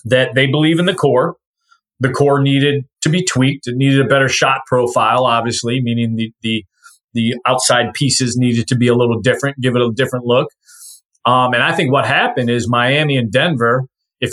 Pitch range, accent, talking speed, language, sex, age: 125-145 Hz, American, 195 wpm, English, male, 30-49